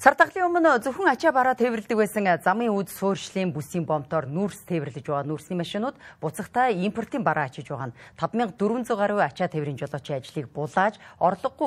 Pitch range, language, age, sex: 155-230 Hz, English, 30-49, female